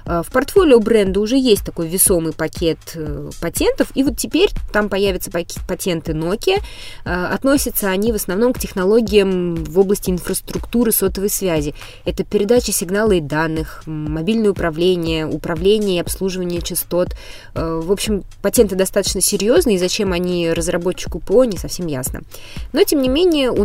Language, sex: Russian, female